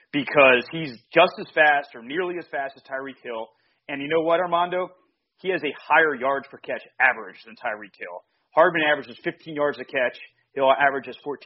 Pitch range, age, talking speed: 125-165 Hz, 30-49, 190 wpm